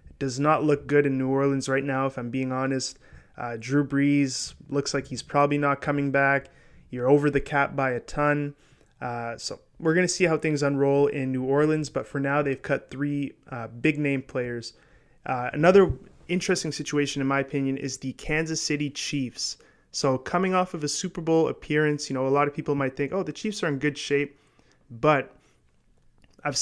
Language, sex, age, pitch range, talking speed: English, male, 20-39, 135-150 Hz, 200 wpm